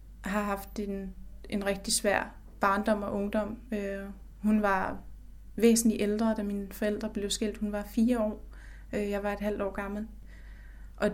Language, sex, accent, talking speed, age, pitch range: Danish, female, native, 155 wpm, 20-39, 200-220 Hz